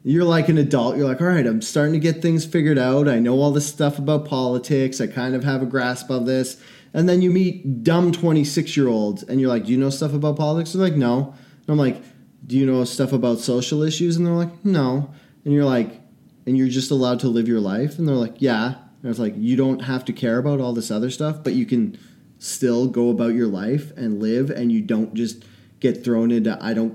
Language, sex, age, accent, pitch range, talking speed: English, male, 20-39, American, 130-170 Hz, 245 wpm